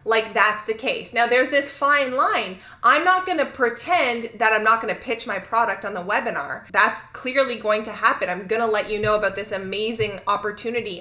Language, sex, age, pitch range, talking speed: English, female, 20-39, 205-250 Hz, 200 wpm